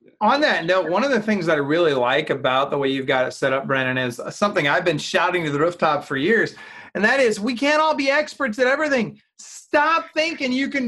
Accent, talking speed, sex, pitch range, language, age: American, 245 wpm, male, 200-300 Hz, English, 30-49